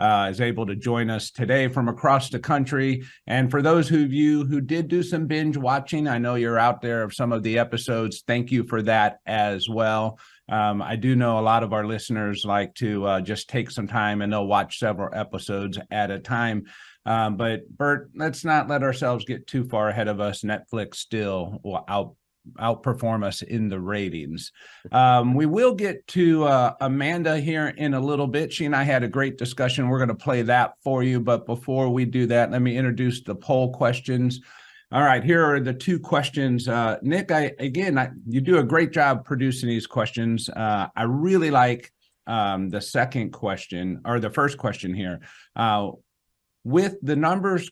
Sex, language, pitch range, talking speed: male, English, 110-145 Hz, 200 wpm